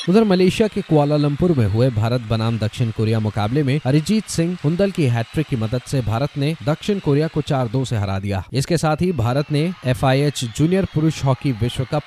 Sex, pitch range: male, 115-160 Hz